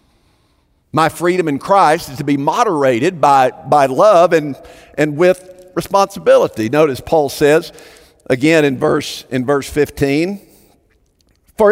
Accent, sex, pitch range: American, male, 155-230 Hz